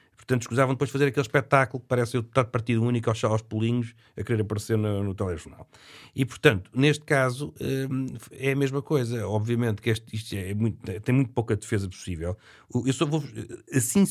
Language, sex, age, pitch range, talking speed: Portuguese, male, 50-69, 115-150 Hz, 195 wpm